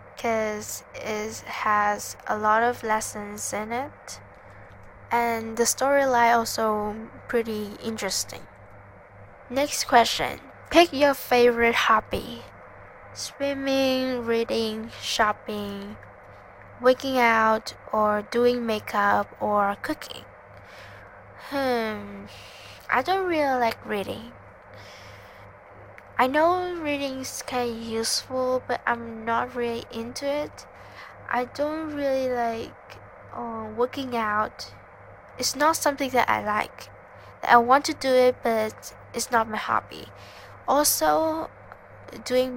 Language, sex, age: English, female, 10-29